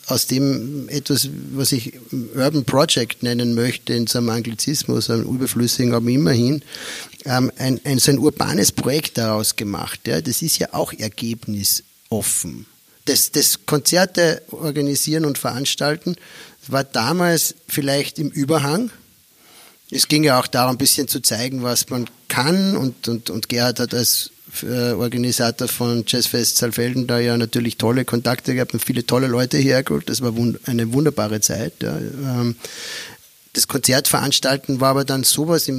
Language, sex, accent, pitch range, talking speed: German, male, German, 115-140 Hz, 145 wpm